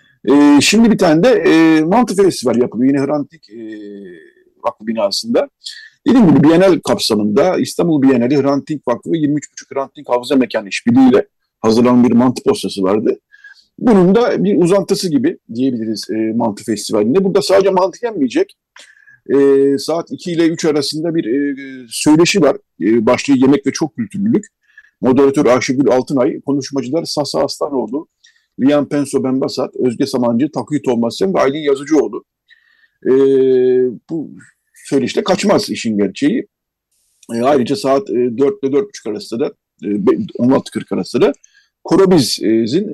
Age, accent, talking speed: 50-69, native, 135 wpm